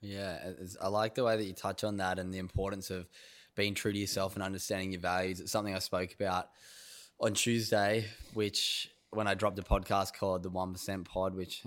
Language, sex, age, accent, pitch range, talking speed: English, male, 10-29, Australian, 95-105 Hz, 205 wpm